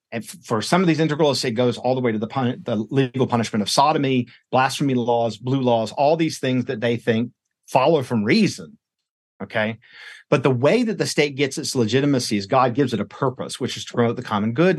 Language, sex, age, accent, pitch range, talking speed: English, male, 50-69, American, 115-145 Hz, 225 wpm